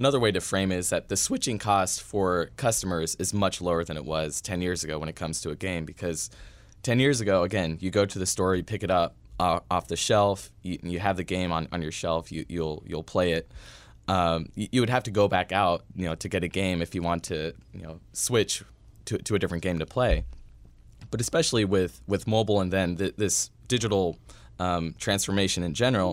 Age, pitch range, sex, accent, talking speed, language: 20-39, 85-105 Hz, male, American, 220 wpm, English